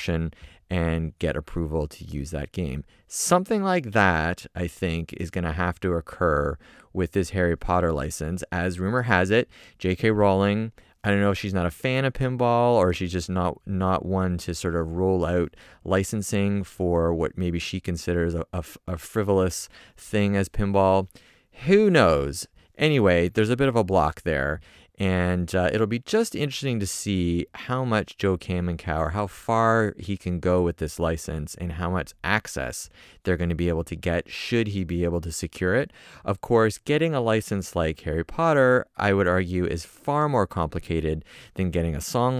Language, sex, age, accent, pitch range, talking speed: English, male, 30-49, American, 85-105 Hz, 185 wpm